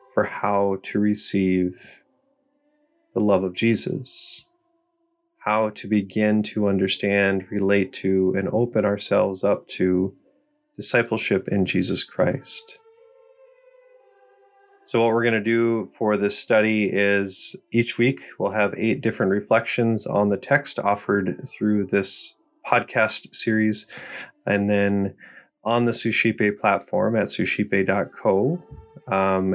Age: 20-39